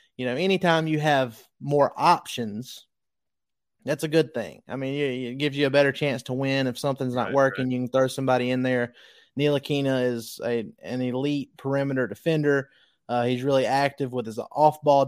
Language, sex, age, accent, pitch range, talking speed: English, male, 20-39, American, 130-155 Hz, 185 wpm